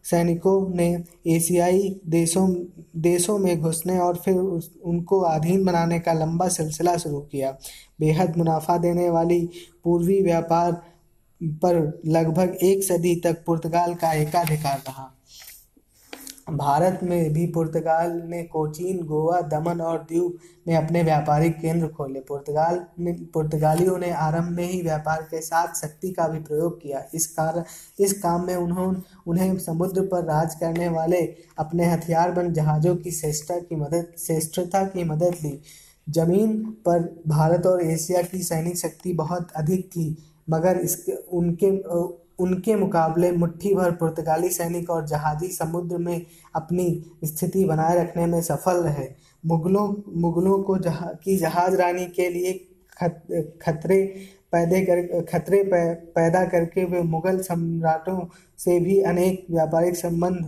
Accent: native